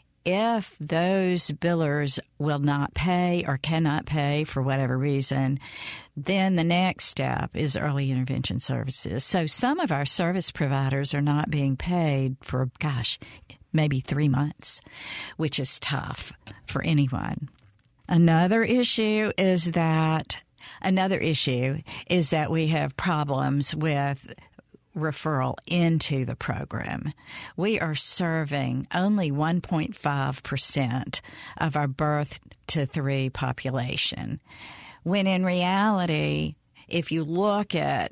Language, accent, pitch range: English, American, 135-175 Hz